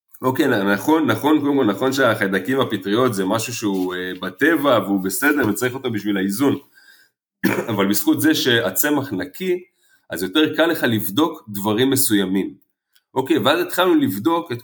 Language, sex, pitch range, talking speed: Hebrew, male, 105-155 Hz, 150 wpm